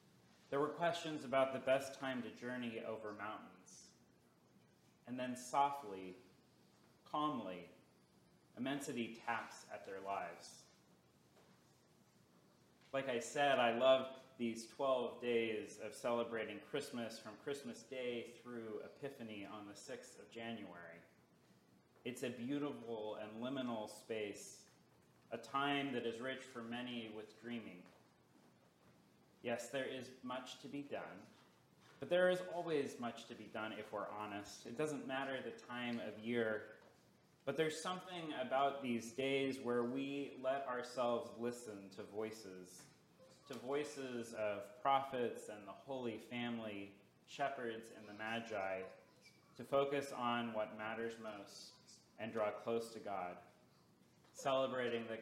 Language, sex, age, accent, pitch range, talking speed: English, male, 30-49, American, 110-135 Hz, 130 wpm